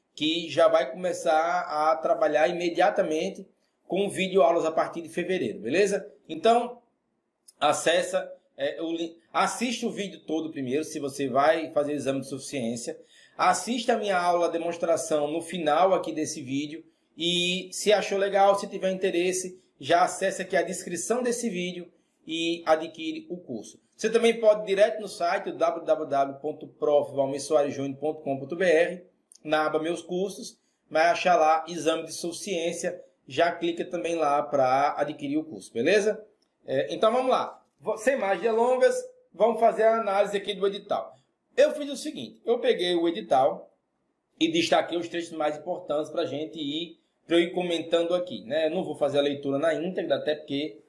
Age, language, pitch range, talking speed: 20-39, Portuguese, 155-200 Hz, 155 wpm